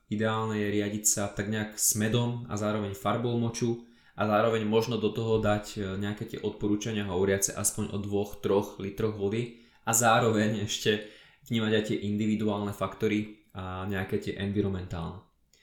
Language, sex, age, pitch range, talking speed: Slovak, male, 20-39, 100-115 Hz, 150 wpm